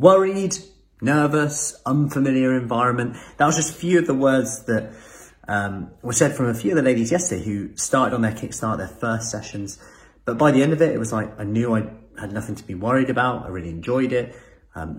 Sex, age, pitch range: male, 30-49, 100-135 Hz